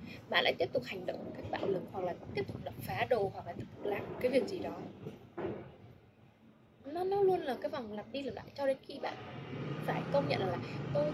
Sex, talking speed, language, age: female, 250 wpm, Vietnamese, 10-29